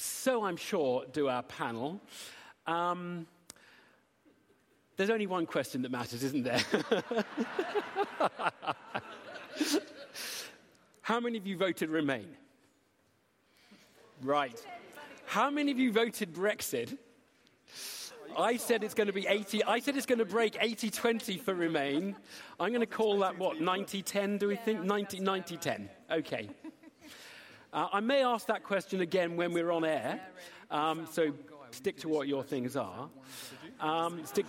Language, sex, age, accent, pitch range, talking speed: English, male, 40-59, British, 150-220 Hz, 140 wpm